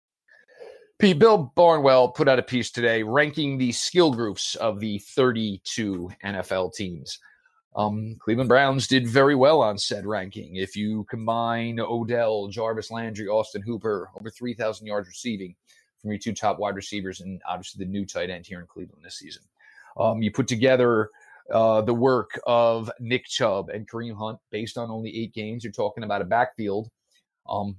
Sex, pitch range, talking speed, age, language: male, 105-125 Hz, 170 wpm, 30-49, English